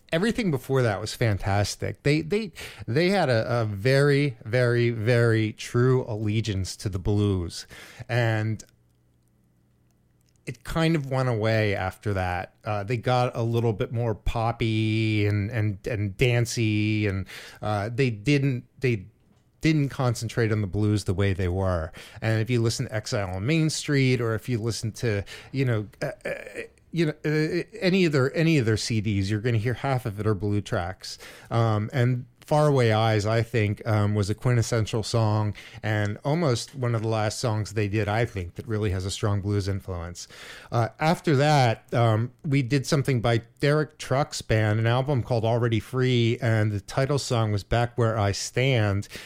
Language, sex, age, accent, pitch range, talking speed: English, male, 30-49, American, 105-135 Hz, 175 wpm